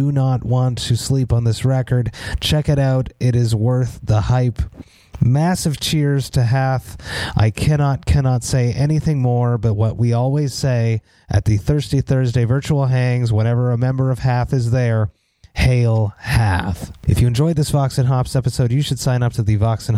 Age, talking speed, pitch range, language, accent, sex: 30-49, 185 wpm, 115-140 Hz, English, American, male